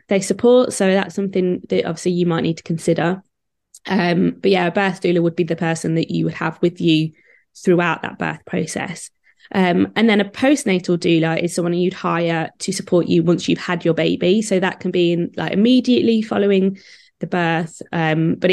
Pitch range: 170-200 Hz